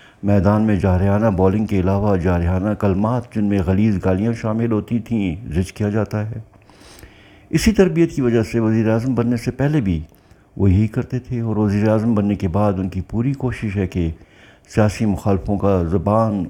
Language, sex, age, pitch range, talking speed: Urdu, male, 60-79, 100-125 Hz, 180 wpm